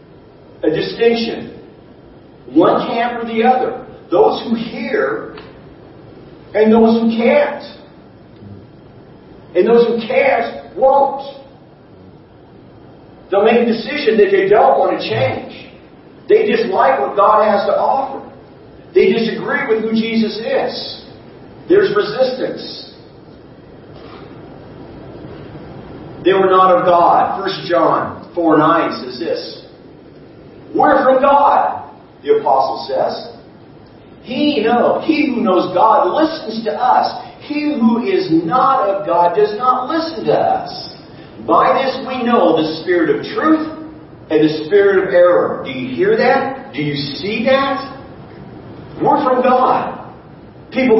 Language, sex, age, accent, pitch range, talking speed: English, male, 50-69, American, 215-310 Hz, 125 wpm